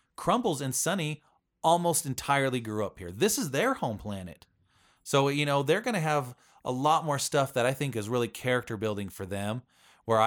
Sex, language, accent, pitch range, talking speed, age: male, English, American, 100-130 Hz, 200 wpm, 30-49